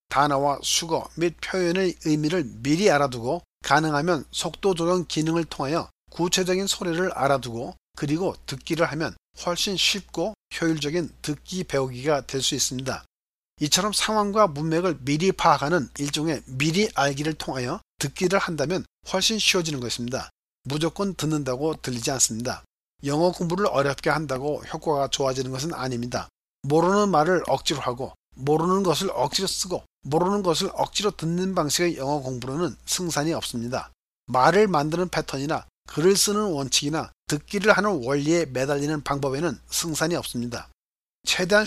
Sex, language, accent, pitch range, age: male, Korean, native, 140-180 Hz, 40-59